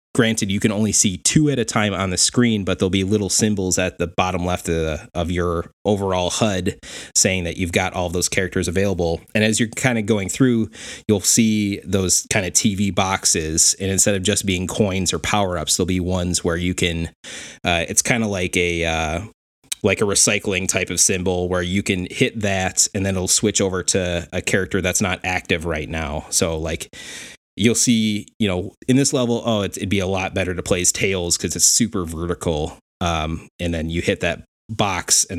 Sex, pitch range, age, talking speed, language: male, 85-105 Hz, 20-39, 215 wpm, English